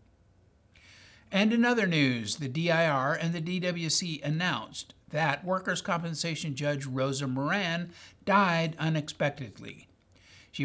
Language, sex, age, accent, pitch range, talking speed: English, male, 60-79, American, 135-180 Hz, 105 wpm